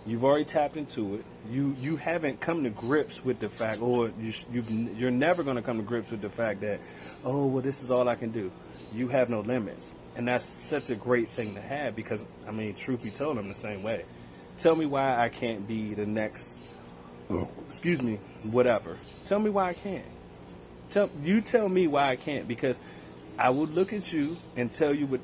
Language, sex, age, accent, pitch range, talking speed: English, male, 30-49, American, 110-150 Hz, 215 wpm